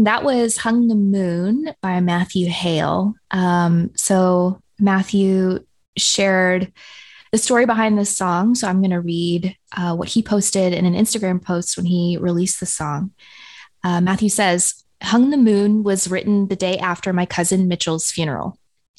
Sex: female